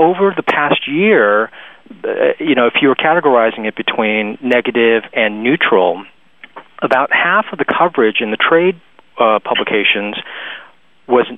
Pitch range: 115-160 Hz